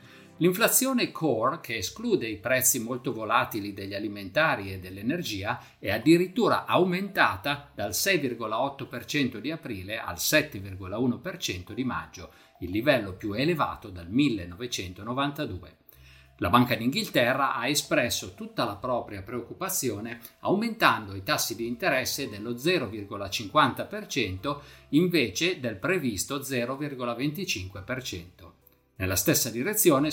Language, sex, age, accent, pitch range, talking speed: Italian, male, 50-69, native, 100-155 Hz, 105 wpm